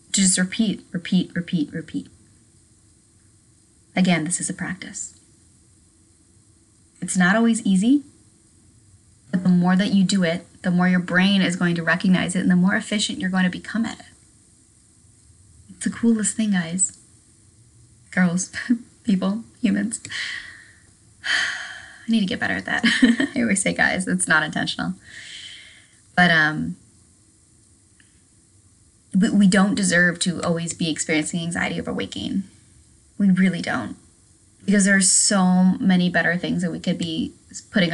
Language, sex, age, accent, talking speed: English, female, 30-49, American, 140 wpm